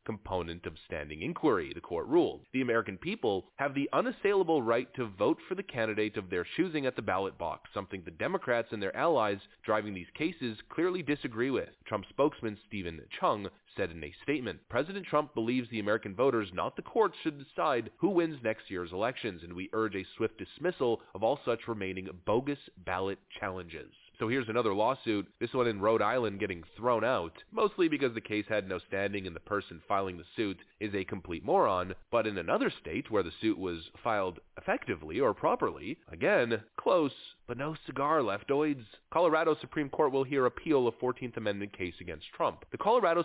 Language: English